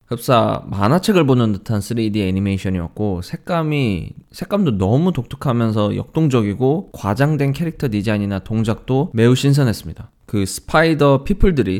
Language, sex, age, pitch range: Korean, male, 20-39, 100-140 Hz